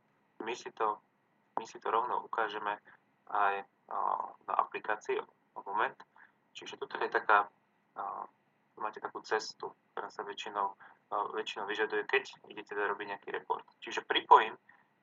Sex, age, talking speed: male, 20-39, 150 wpm